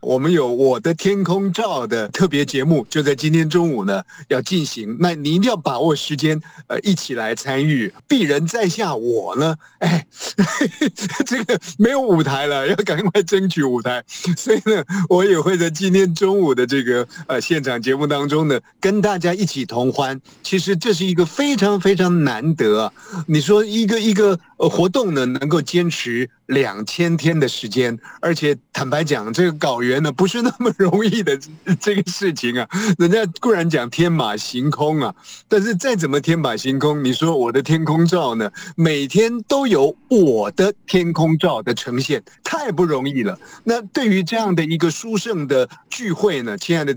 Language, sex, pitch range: Chinese, male, 140-195 Hz